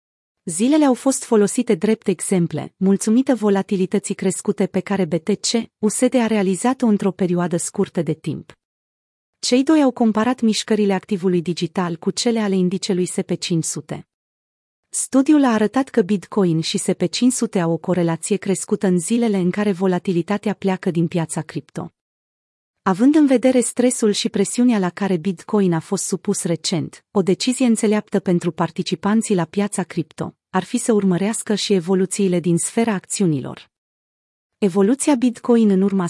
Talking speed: 140 wpm